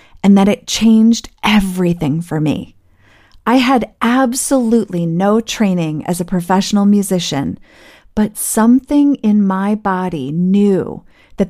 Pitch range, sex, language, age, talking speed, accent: 175-220 Hz, female, English, 40-59, 120 wpm, American